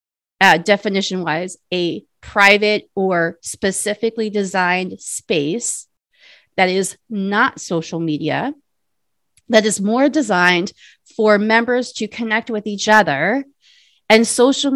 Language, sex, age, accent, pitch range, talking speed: English, female, 30-49, American, 180-235 Hz, 110 wpm